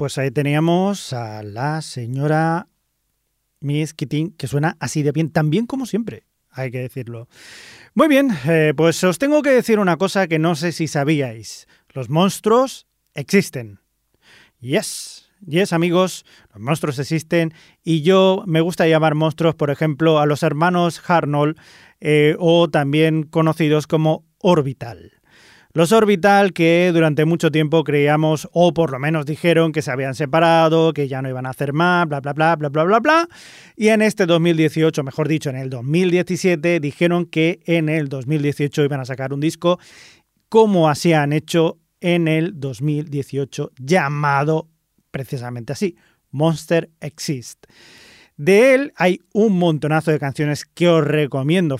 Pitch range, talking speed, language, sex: 145-175 Hz, 155 wpm, Spanish, male